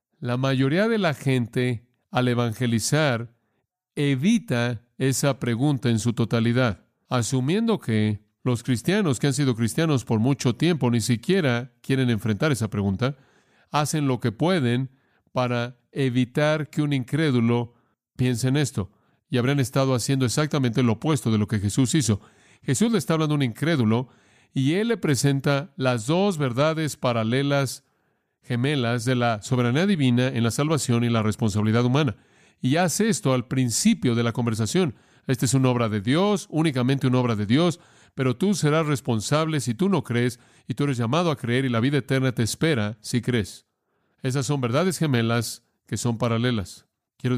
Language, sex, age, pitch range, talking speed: English, male, 40-59, 120-145 Hz, 165 wpm